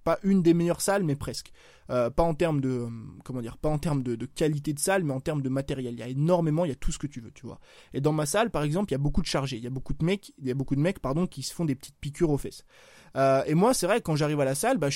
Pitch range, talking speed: 140-185 Hz, 340 wpm